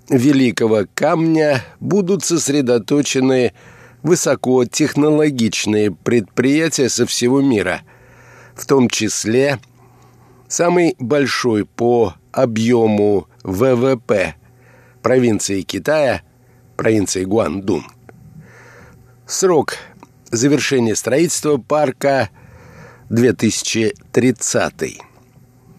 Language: Russian